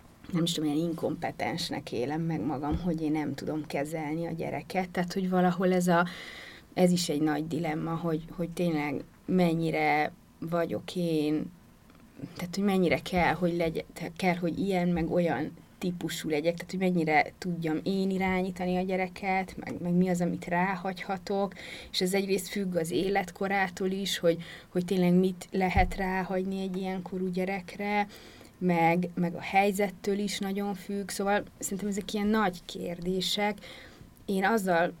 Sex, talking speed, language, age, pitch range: female, 155 wpm, Hungarian, 30-49, 165-190 Hz